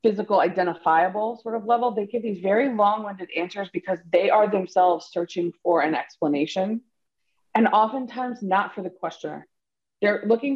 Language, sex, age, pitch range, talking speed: English, female, 30-49, 175-230 Hz, 155 wpm